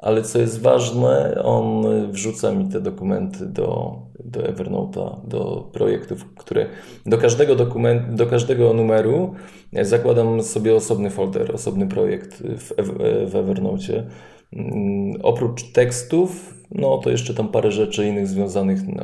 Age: 20-39